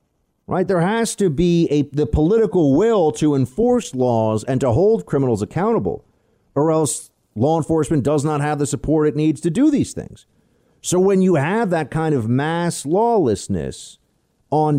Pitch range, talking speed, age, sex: 120-175 Hz, 170 wpm, 50-69, male